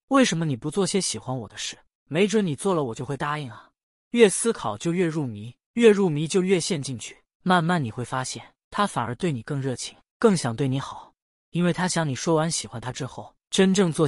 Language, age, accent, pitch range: Chinese, 20-39, native, 130-185 Hz